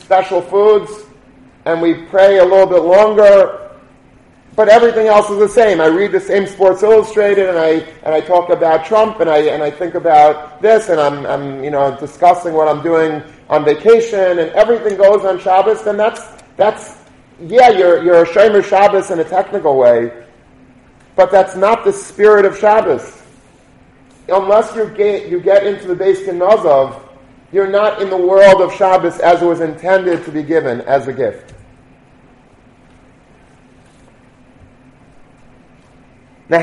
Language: English